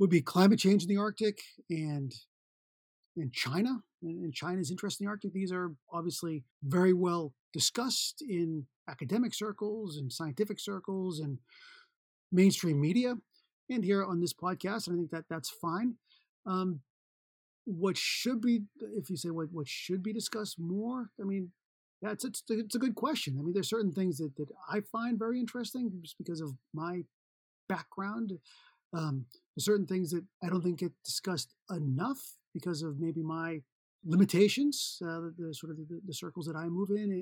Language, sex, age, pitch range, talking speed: English, male, 40-59, 165-215 Hz, 175 wpm